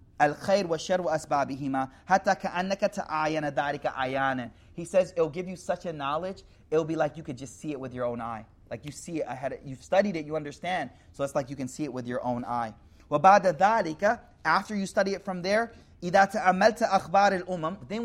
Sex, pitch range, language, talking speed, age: male, 145-205 Hz, English, 165 wpm, 30-49